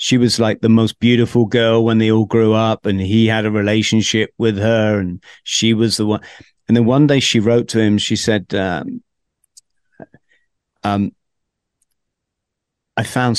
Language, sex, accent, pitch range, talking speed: English, male, British, 105-125 Hz, 170 wpm